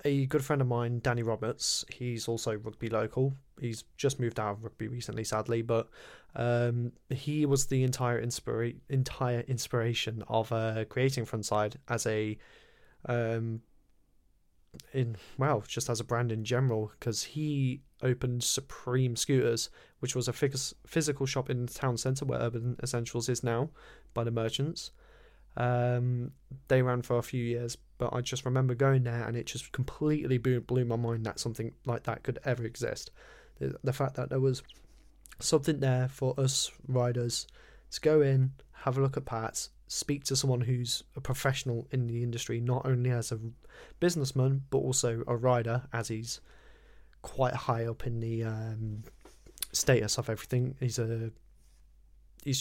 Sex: male